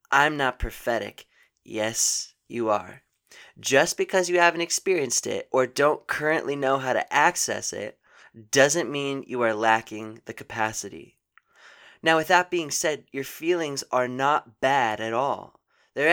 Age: 20-39